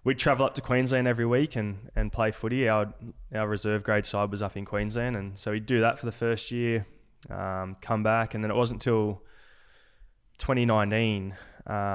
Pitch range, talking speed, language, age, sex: 100-115 Hz, 190 wpm, English, 20-39, male